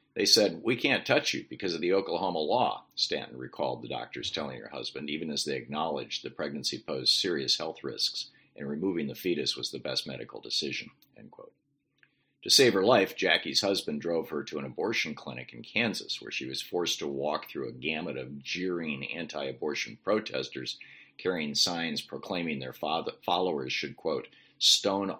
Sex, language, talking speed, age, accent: male, English, 175 wpm, 50-69, American